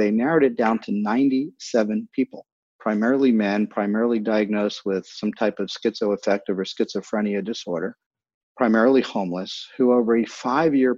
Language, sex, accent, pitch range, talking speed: English, male, American, 105-130 Hz, 135 wpm